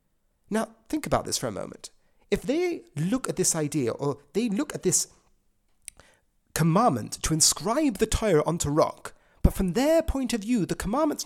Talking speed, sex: 175 wpm, male